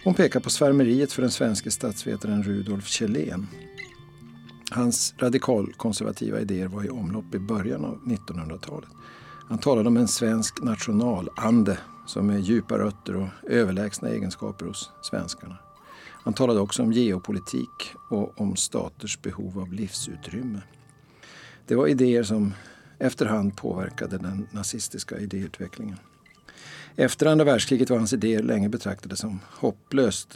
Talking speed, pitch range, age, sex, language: 130 wpm, 95-125 Hz, 50-69, male, Swedish